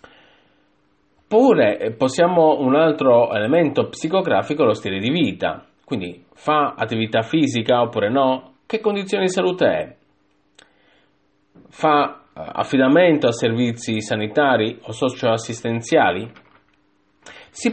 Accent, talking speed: native, 100 wpm